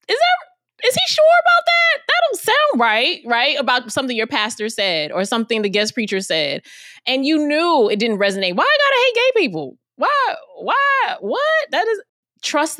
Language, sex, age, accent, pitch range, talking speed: English, female, 20-39, American, 170-240 Hz, 185 wpm